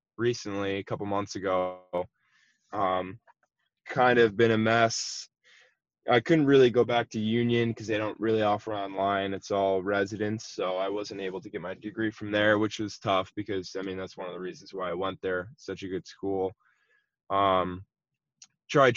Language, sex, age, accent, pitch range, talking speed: English, male, 10-29, American, 95-110 Hz, 185 wpm